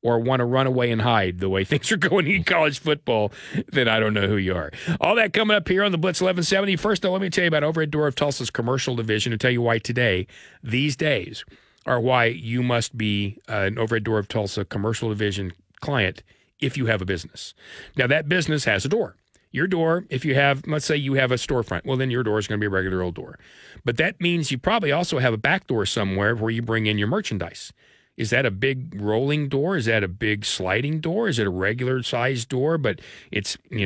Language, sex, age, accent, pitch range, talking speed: English, male, 40-59, American, 110-150 Hz, 240 wpm